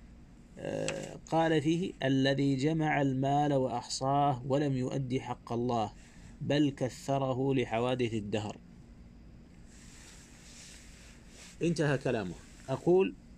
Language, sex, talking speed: Arabic, male, 75 wpm